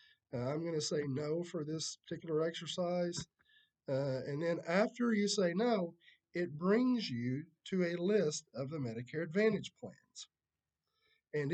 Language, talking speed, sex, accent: English, 145 wpm, male, American